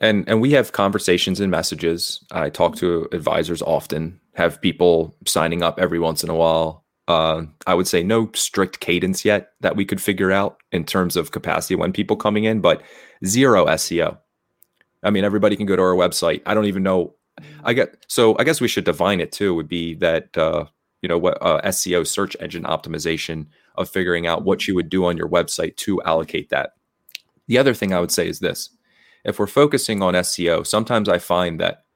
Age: 30-49